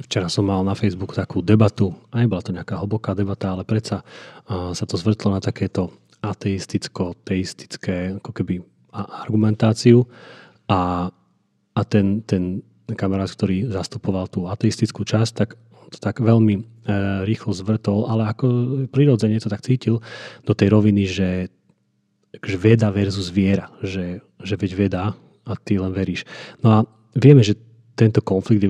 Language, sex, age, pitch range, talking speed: Slovak, male, 30-49, 100-115 Hz, 140 wpm